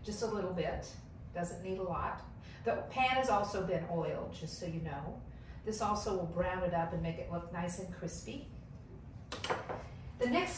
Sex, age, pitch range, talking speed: female, 50-69, 180-235 Hz, 185 wpm